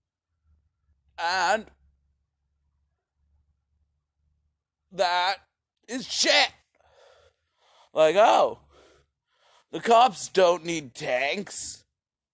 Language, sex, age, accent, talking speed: English, male, 50-69, American, 55 wpm